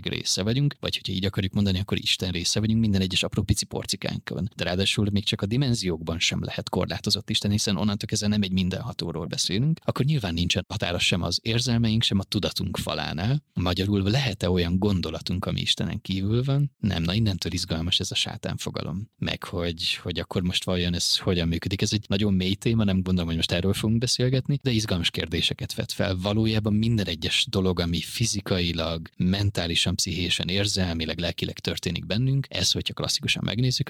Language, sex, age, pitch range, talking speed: Hungarian, male, 30-49, 90-110 Hz, 180 wpm